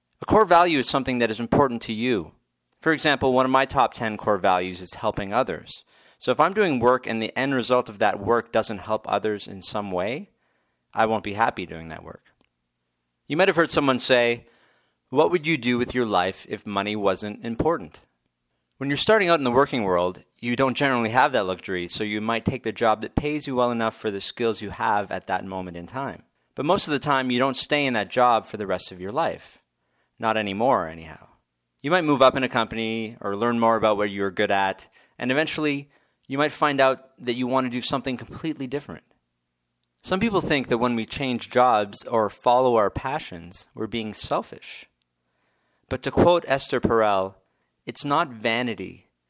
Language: English